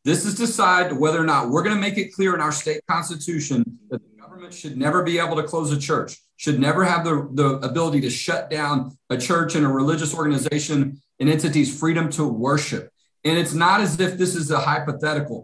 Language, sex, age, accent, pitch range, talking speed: English, male, 40-59, American, 150-180 Hz, 220 wpm